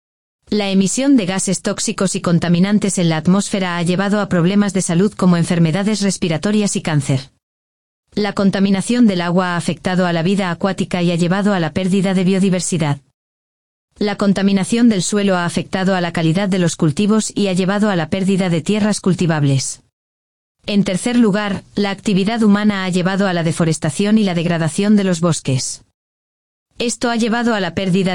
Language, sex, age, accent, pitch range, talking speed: Spanish, female, 30-49, Spanish, 165-205 Hz, 175 wpm